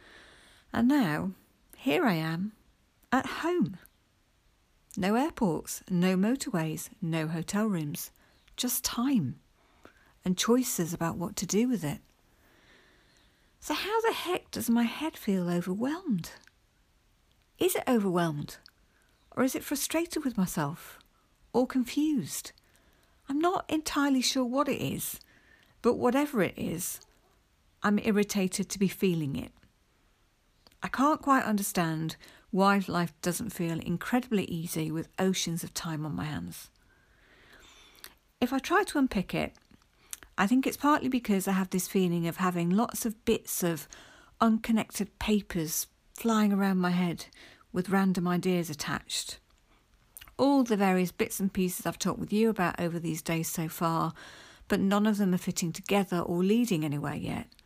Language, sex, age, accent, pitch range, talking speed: Indonesian, female, 50-69, British, 175-245 Hz, 140 wpm